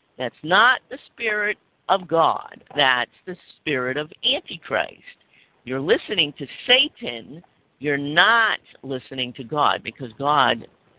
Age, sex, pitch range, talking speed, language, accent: 50-69, female, 135-180 Hz, 120 wpm, English, American